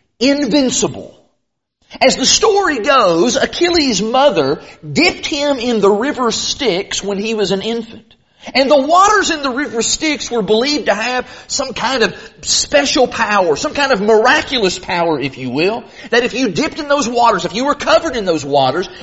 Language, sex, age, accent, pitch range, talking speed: English, male, 40-59, American, 210-290 Hz, 175 wpm